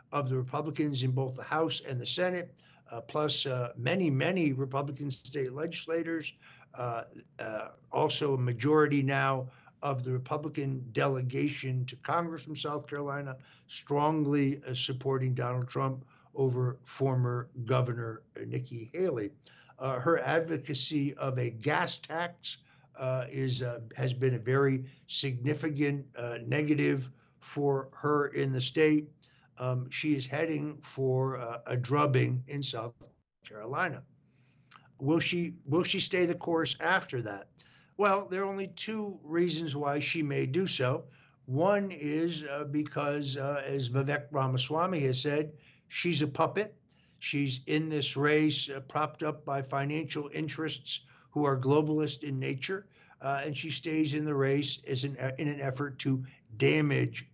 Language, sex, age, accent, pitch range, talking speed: English, male, 60-79, American, 130-155 Hz, 145 wpm